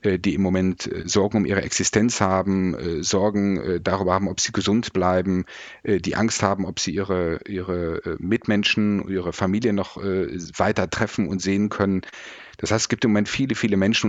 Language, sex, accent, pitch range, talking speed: German, male, German, 95-115 Hz, 170 wpm